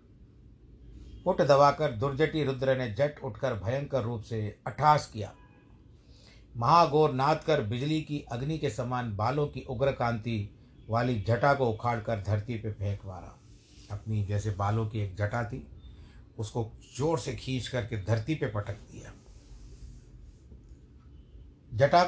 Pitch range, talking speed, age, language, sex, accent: 105-135 Hz, 135 wpm, 50-69, Hindi, male, native